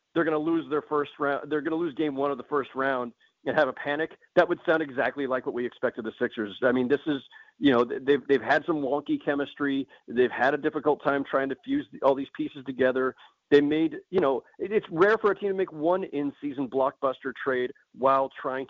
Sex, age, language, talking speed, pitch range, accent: male, 40-59, English, 235 wpm, 135-170 Hz, American